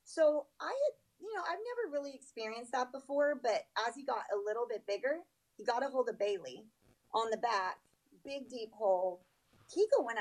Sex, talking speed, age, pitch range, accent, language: female, 195 wpm, 30-49, 205-265 Hz, American, English